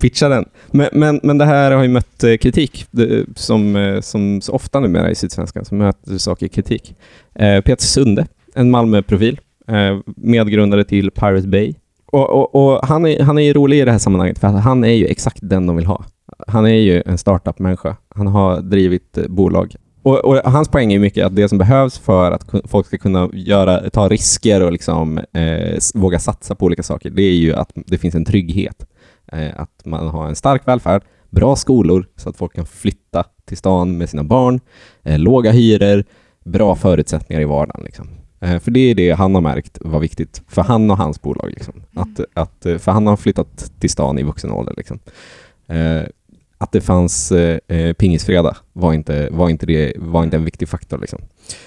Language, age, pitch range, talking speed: Swedish, 20-39, 85-110 Hz, 195 wpm